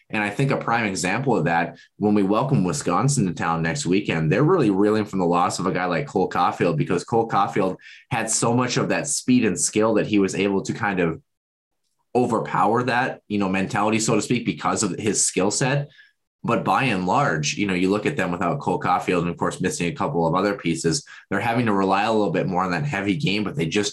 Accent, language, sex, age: American, English, male, 20-39